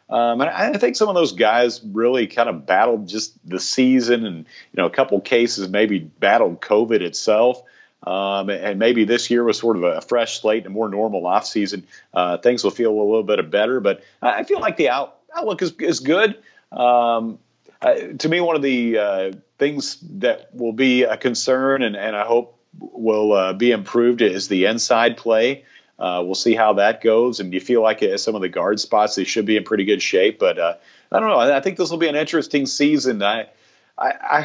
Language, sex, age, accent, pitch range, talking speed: English, male, 40-59, American, 105-130 Hz, 215 wpm